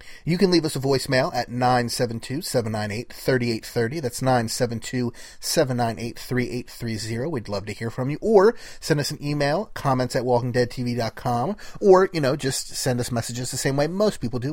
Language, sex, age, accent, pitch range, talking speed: English, male, 30-49, American, 120-150 Hz, 155 wpm